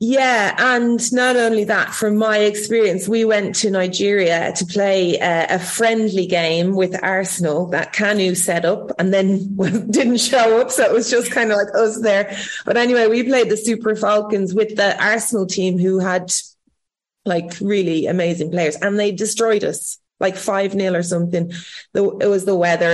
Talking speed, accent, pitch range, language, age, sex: 175 wpm, Irish, 185-225 Hz, English, 30-49, female